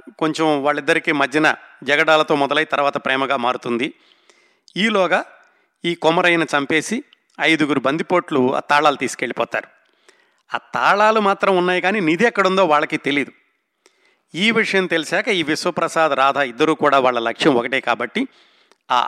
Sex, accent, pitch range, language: male, native, 140-185 Hz, Telugu